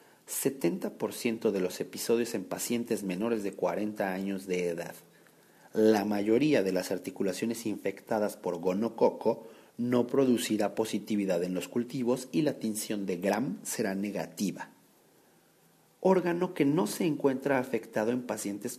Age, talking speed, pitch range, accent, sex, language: 50-69, 130 wpm, 105-140 Hz, Mexican, male, Spanish